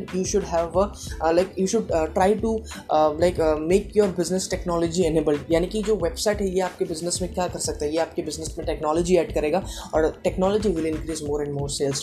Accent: native